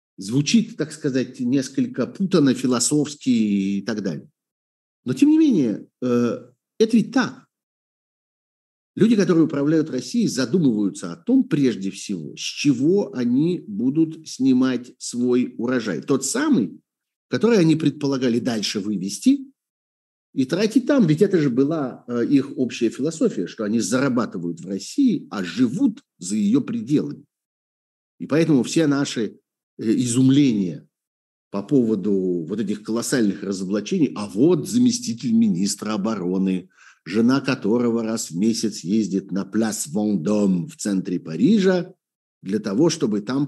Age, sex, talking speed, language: 50-69, male, 125 wpm, Russian